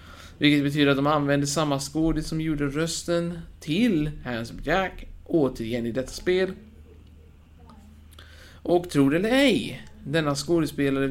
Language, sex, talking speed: Swedish, male, 130 wpm